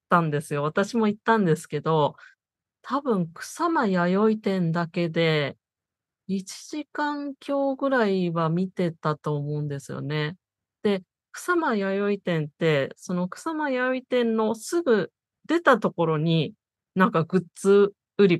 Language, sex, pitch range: Japanese, female, 165-230 Hz